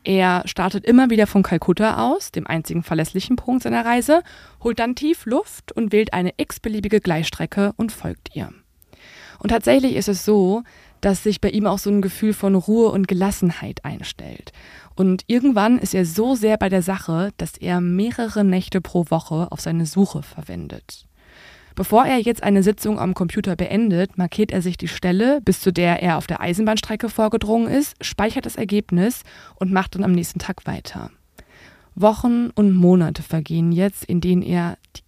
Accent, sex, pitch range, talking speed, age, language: German, female, 175-220 Hz, 175 wpm, 20-39, German